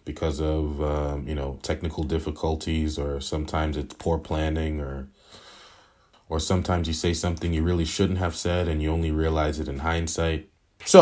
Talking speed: 170 wpm